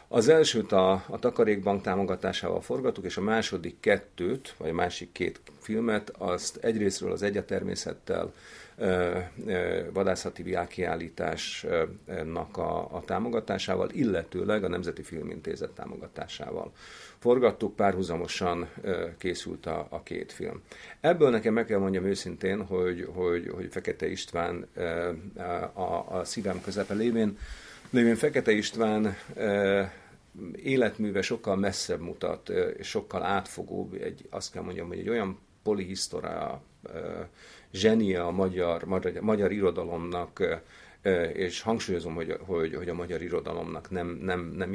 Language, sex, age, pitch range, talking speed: Hungarian, male, 50-69, 90-105 Hz, 120 wpm